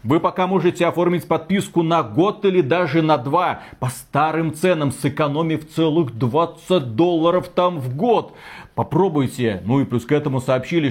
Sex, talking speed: male, 155 wpm